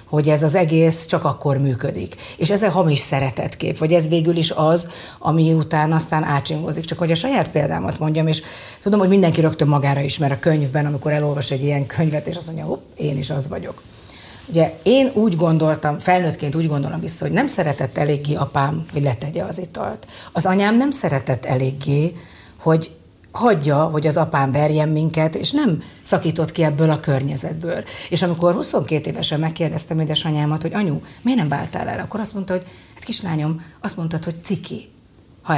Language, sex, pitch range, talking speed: Hungarian, female, 145-175 Hz, 180 wpm